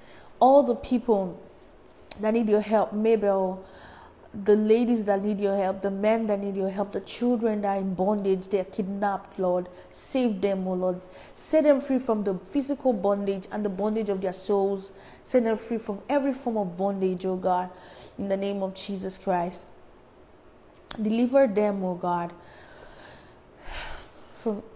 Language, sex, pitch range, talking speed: English, female, 185-215 Hz, 175 wpm